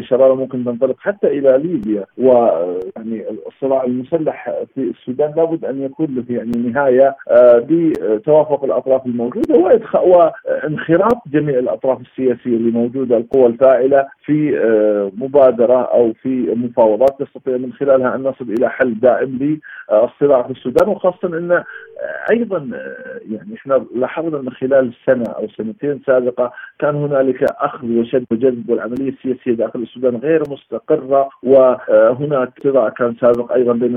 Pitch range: 120-150 Hz